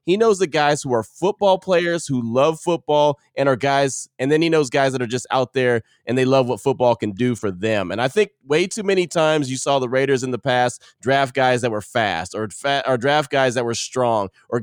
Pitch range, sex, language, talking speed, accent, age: 120-145 Hz, male, English, 250 wpm, American, 20-39